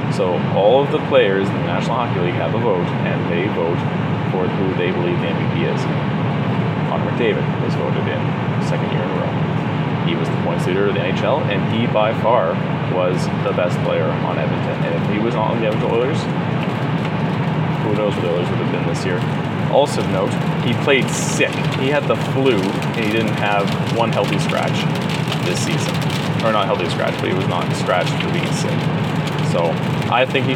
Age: 30-49